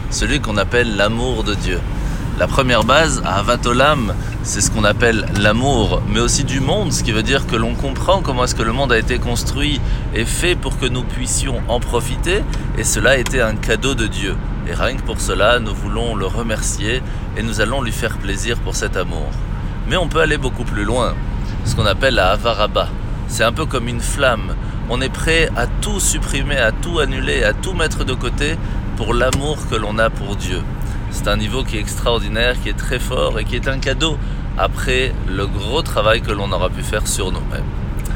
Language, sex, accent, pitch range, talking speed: French, male, French, 105-120 Hz, 210 wpm